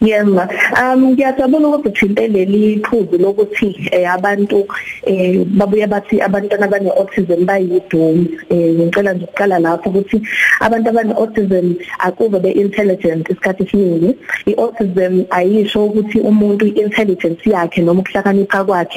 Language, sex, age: English, female, 20-39